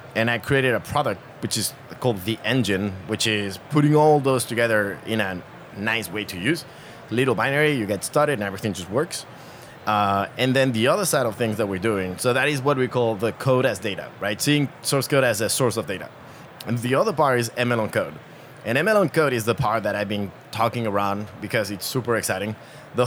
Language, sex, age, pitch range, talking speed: English, male, 30-49, 105-140 Hz, 225 wpm